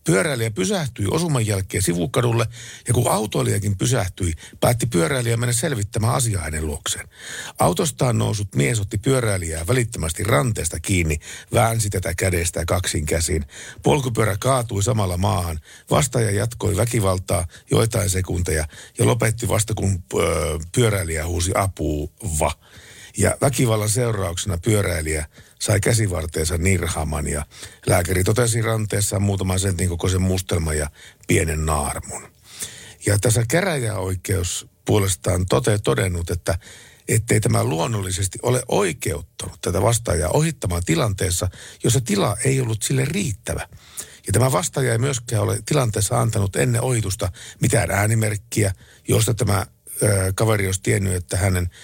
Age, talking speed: 50-69, 125 wpm